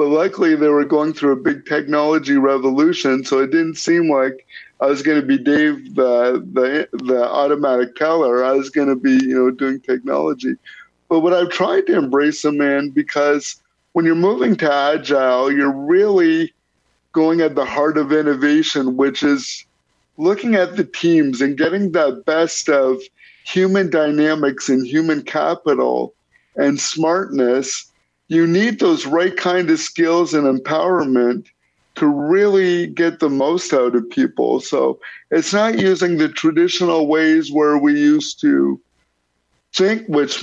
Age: 50-69